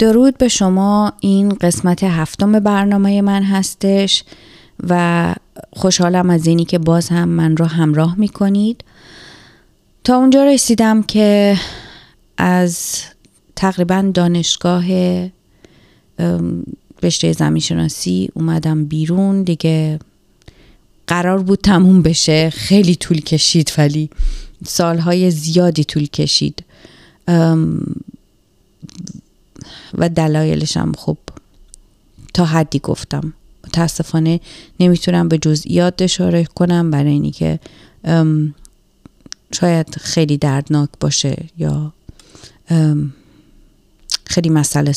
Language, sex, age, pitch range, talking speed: Persian, female, 30-49, 155-190 Hz, 90 wpm